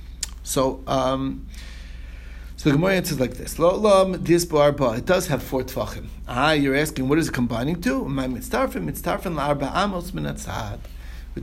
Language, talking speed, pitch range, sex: English, 125 wpm, 130-175 Hz, male